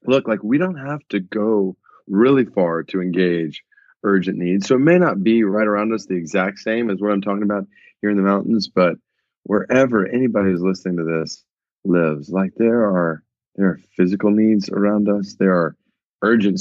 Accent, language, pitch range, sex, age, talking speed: American, English, 90-105 Hz, male, 30-49, 190 wpm